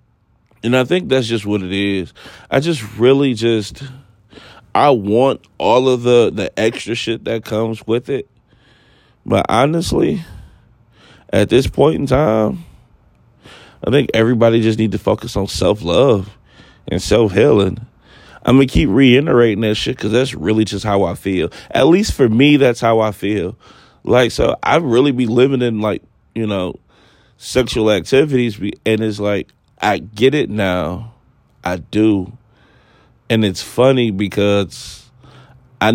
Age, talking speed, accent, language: 20-39, 150 wpm, American, English